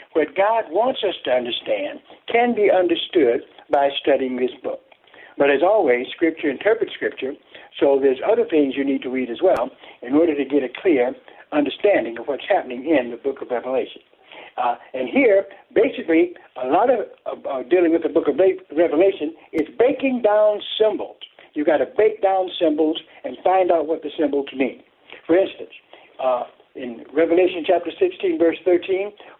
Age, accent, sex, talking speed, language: 60-79, American, male, 170 wpm, English